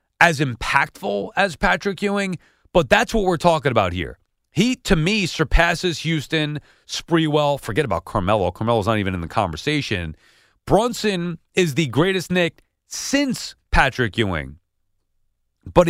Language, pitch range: English, 115-160 Hz